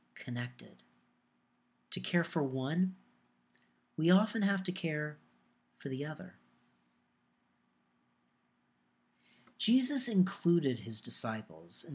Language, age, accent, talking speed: English, 40-59, American, 90 wpm